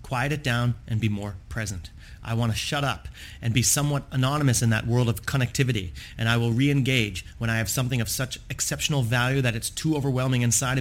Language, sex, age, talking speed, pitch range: English, male, 30-49, 210 wpm, 115-130 Hz